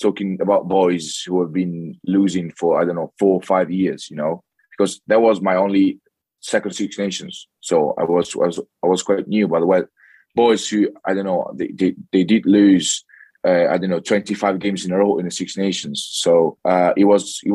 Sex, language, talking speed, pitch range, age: male, English, 225 wpm, 90-100 Hz, 20-39